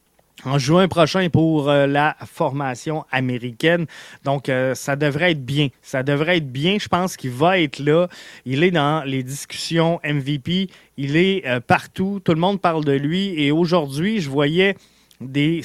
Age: 20-39